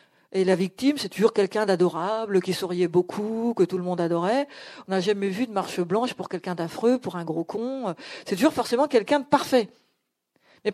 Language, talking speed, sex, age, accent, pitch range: French, 200 wpm, female, 50-69, French, 190-255 Hz